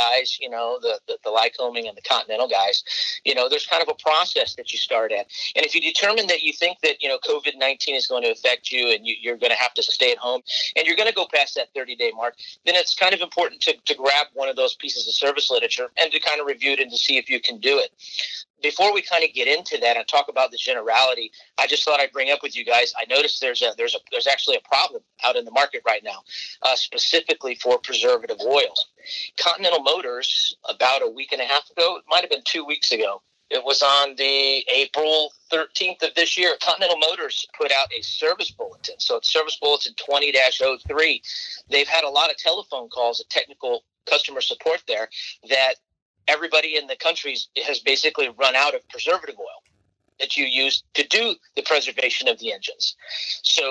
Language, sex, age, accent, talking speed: English, male, 40-59, American, 225 wpm